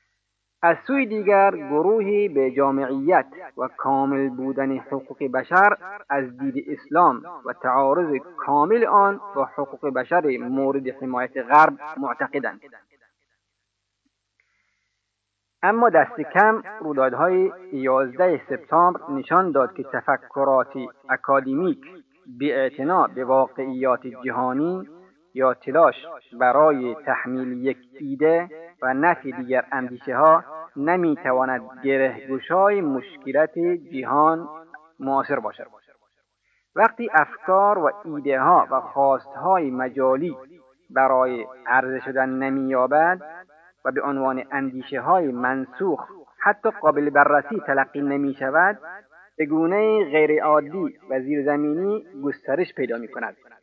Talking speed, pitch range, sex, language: 105 wpm, 130-175 Hz, male, Persian